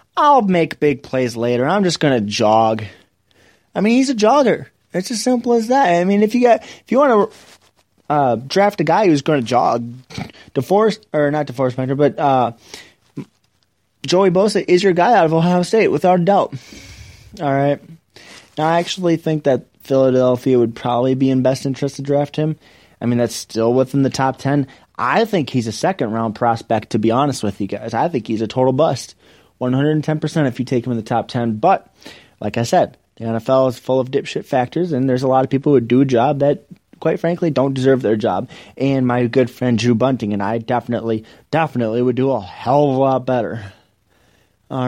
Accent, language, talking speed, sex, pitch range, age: American, English, 205 wpm, male, 115-150 Hz, 20-39